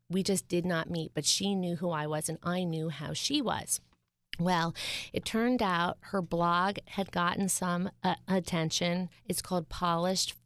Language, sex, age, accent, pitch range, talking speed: English, female, 30-49, American, 160-195 Hz, 180 wpm